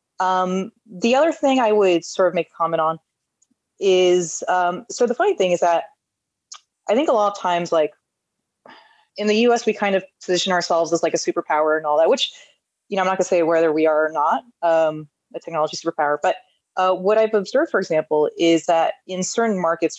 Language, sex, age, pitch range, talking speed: English, female, 20-39, 165-210 Hz, 215 wpm